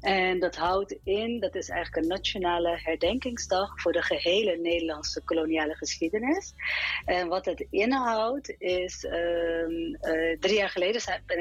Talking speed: 140 wpm